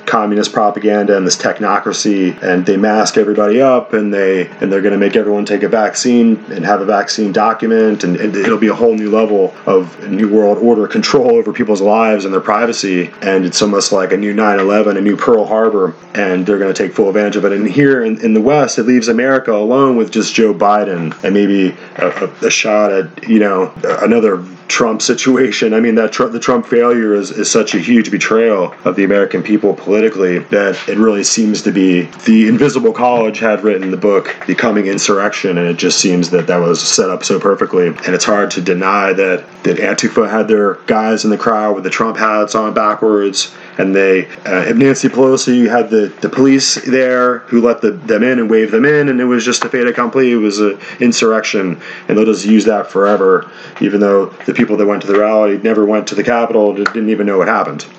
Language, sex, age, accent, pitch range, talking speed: English, male, 30-49, American, 100-120 Hz, 220 wpm